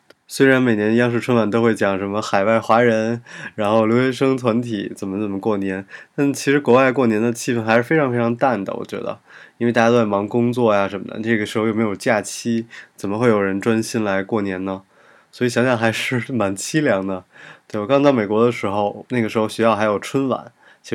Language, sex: Chinese, male